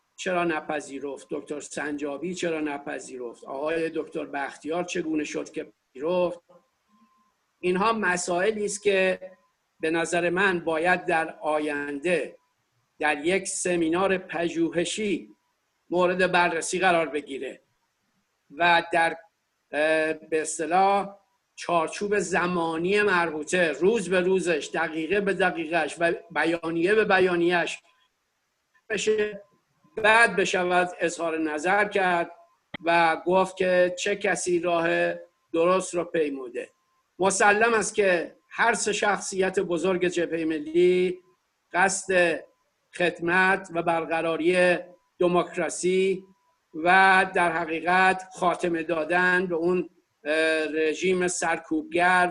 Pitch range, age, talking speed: 165-190 Hz, 50-69, 95 wpm